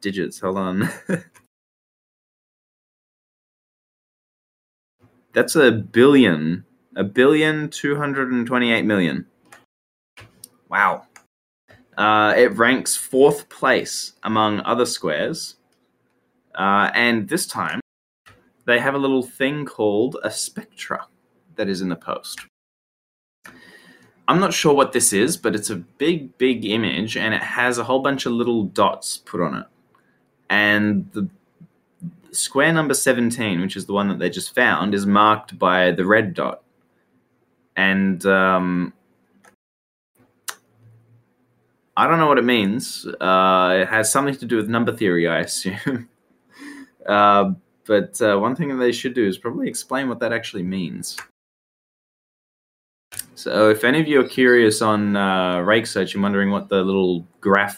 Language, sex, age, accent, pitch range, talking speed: English, male, 20-39, Australian, 95-125 Hz, 135 wpm